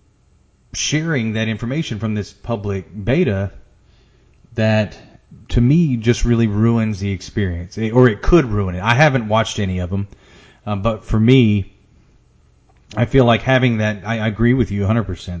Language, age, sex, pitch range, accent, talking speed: English, 30-49, male, 100-120 Hz, American, 165 wpm